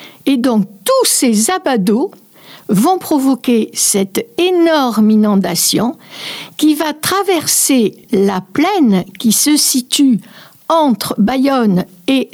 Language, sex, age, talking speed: French, female, 60-79, 100 wpm